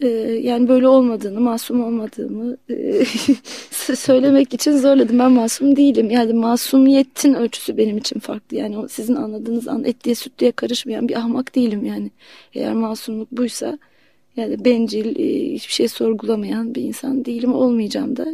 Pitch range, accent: 235-275 Hz, native